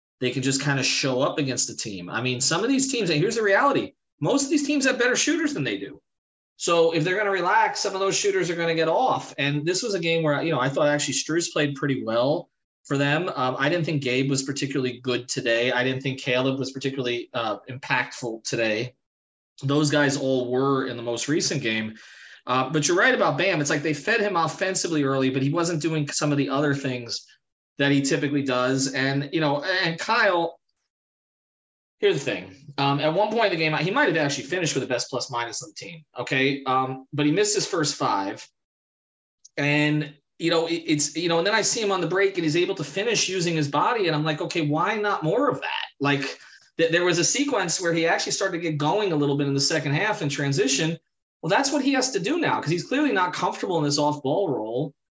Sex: male